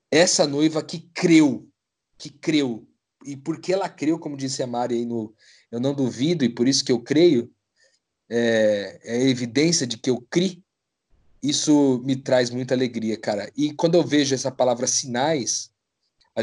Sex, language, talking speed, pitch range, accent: male, Portuguese, 170 wpm, 120-155 Hz, Brazilian